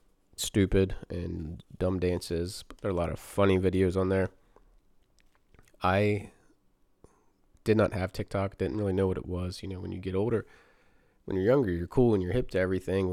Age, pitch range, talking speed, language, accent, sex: 20-39, 90-105 Hz, 190 wpm, English, American, male